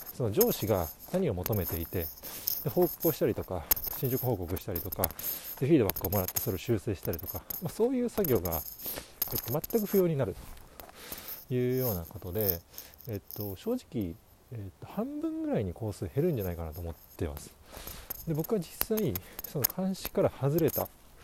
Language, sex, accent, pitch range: Japanese, male, native, 90-135 Hz